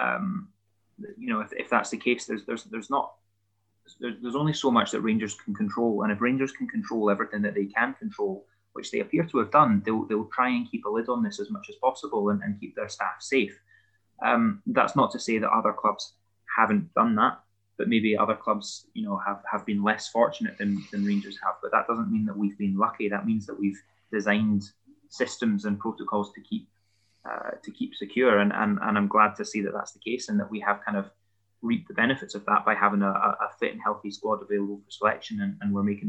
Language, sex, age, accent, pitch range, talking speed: English, male, 20-39, British, 100-135 Hz, 235 wpm